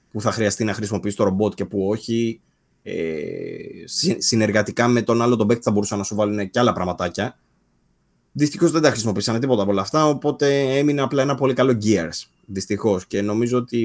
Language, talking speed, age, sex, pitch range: Greek, 185 wpm, 20-39, male, 100-120 Hz